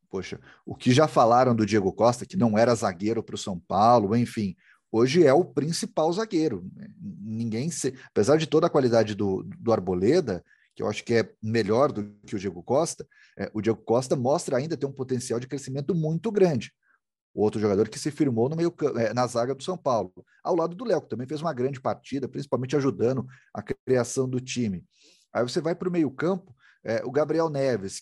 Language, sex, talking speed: Portuguese, male, 195 wpm